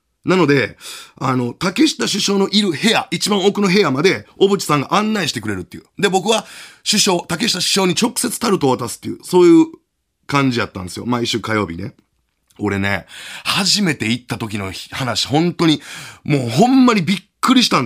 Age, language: 30-49, Japanese